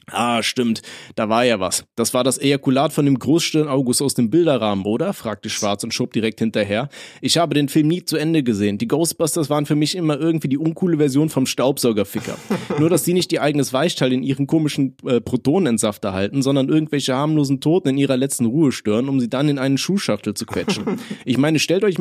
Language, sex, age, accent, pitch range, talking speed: German, male, 30-49, German, 115-155 Hz, 215 wpm